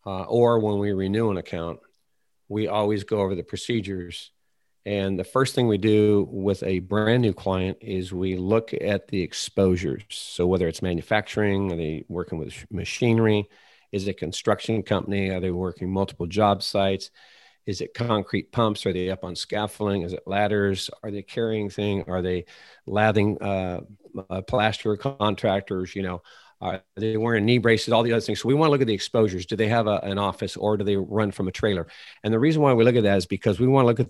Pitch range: 95-115 Hz